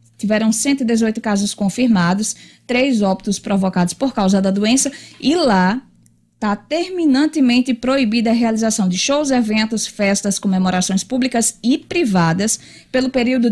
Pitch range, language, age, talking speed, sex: 200-260 Hz, Portuguese, 20-39, 125 wpm, female